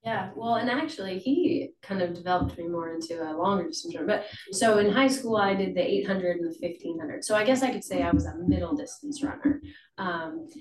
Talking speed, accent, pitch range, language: 210 wpm, American, 180-215 Hz, English